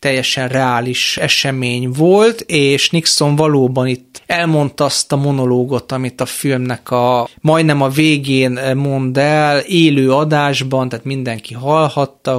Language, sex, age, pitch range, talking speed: Hungarian, male, 30-49, 125-145 Hz, 125 wpm